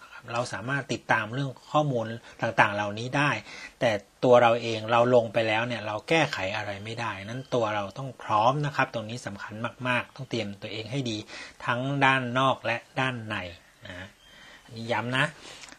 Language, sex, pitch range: Thai, male, 115-140 Hz